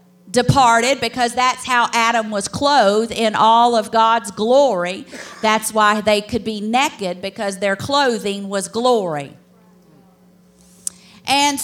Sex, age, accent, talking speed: female, 50-69, American, 125 wpm